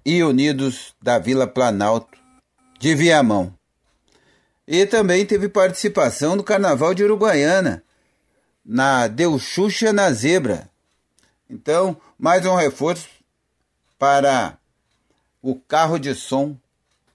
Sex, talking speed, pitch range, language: male, 100 wpm, 115-165 Hz, Portuguese